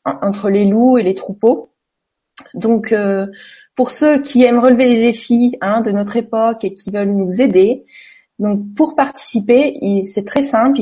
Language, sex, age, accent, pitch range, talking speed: French, female, 30-49, French, 200-255 Hz, 170 wpm